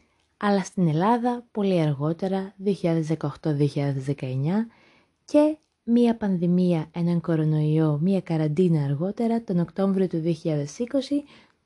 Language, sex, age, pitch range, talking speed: Greek, female, 20-39, 160-210 Hz, 95 wpm